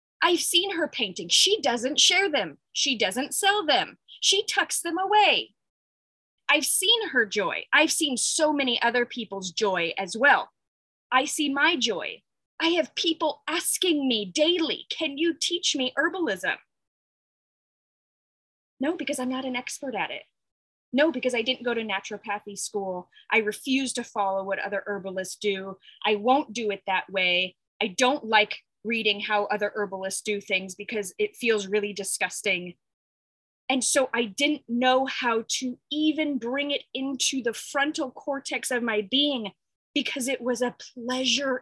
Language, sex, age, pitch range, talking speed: English, female, 20-39, 215-310 Hz, 160 wpm